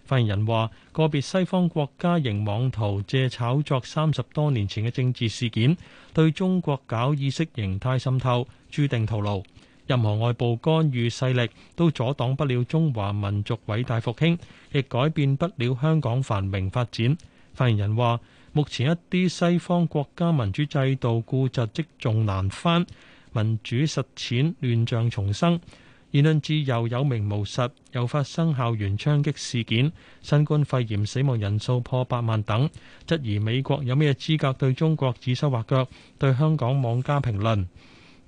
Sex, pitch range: male, 115-150 Hz